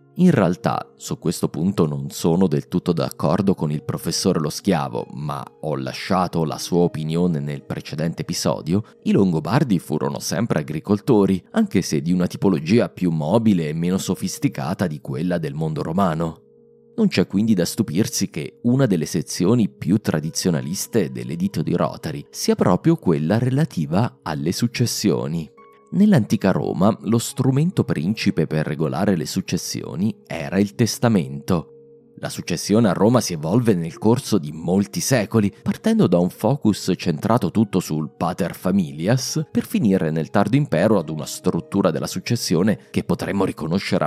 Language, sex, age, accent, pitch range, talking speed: Italian, male, 30-49, native, 80-135 Hz, 150 wpm